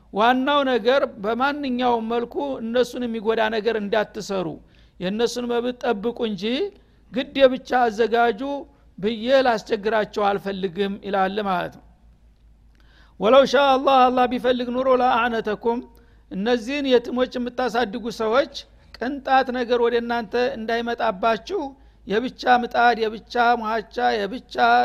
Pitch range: 215-245 Hz